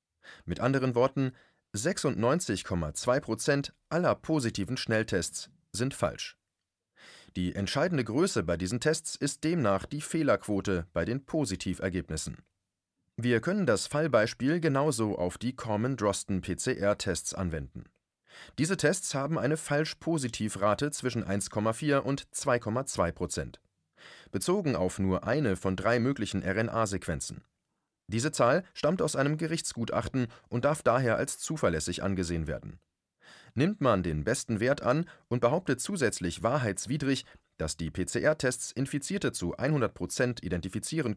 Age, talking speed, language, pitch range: 40-59, 115 wpm, German, 95-140 Hz